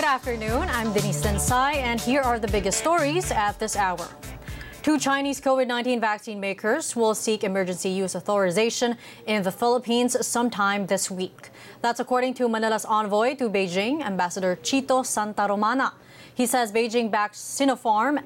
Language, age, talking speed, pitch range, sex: English, 20-39, 145 wpm, 200-250 Hz, female